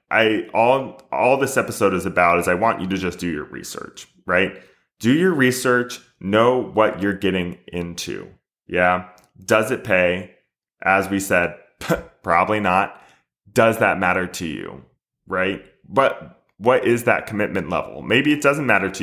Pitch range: 95-125 Hz